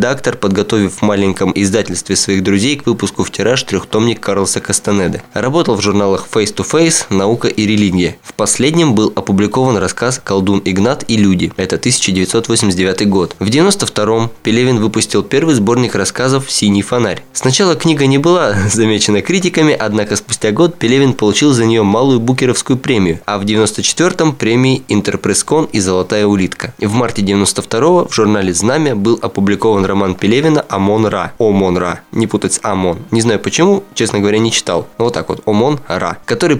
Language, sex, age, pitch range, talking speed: Russian, male, 20-39, 100-130 Hz, 160 wpm